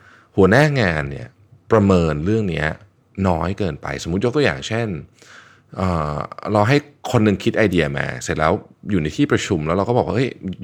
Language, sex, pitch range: Thai, male, 85-120 Hz